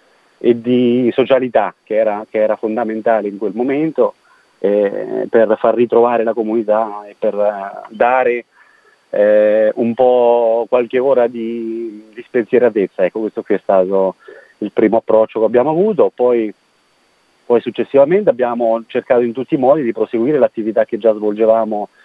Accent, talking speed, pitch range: native, 150 wpm, 105-120 Hz